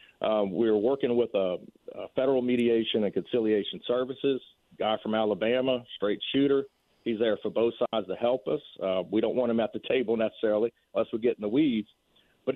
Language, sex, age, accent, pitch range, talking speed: English, male, 50-69, American, 110-130 Hz, 195 wpm